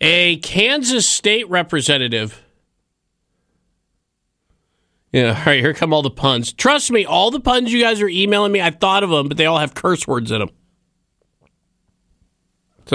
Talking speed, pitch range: 160 wpm, 125-170 Hz